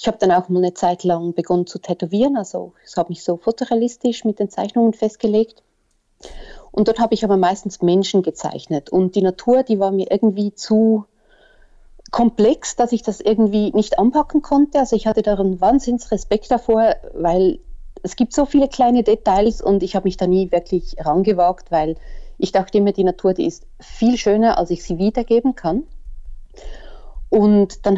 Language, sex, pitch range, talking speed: German, female, 175-225 Hz, 180 wpm